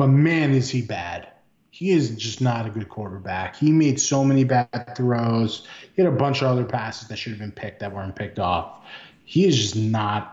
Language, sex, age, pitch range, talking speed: English, male, 20-39, 110-140 Hz, 220 wpm